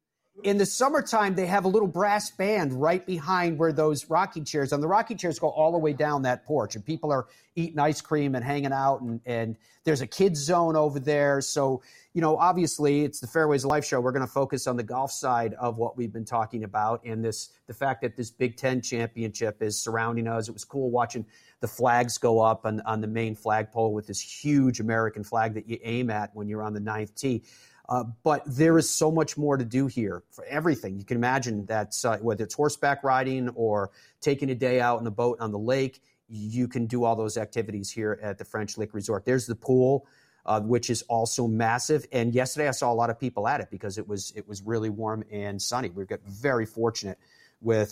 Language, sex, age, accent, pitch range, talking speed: English, male, 40-59, American, 110-145 Hz, 225 wpm